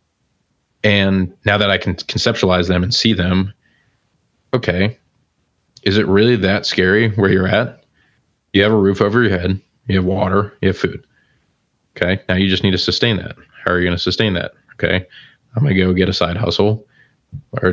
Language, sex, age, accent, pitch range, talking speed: English, male, 20-39, American, 90-105 Hz, 195 wpm